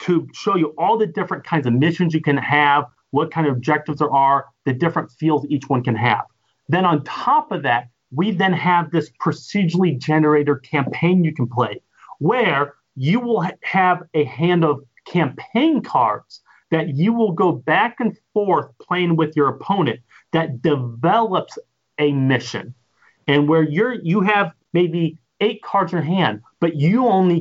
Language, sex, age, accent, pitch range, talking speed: English, male, 40-59, American, 145-190 Hz, 170 wpm